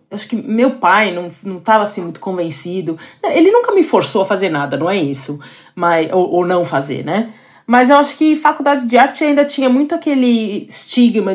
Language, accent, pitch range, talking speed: Portuguese, Brazilian, 180-255 Hz, 200 wpm